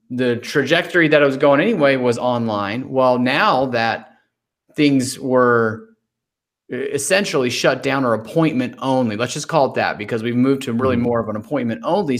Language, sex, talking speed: English, male, 170 wpm